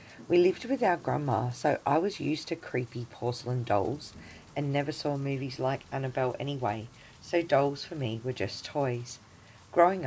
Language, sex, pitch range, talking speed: English, female, 120-150 Hz, 165 wpm